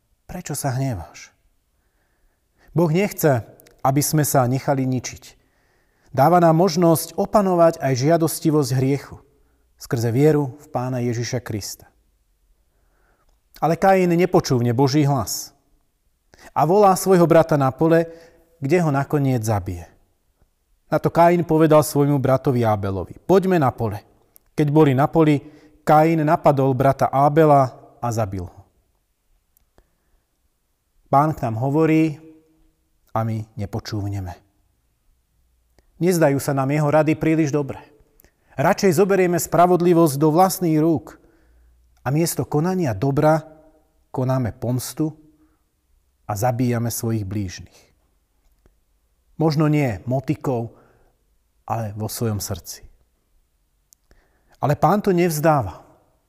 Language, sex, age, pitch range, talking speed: Slovak, male, 30-49, 100-160 Hz, 105 wpm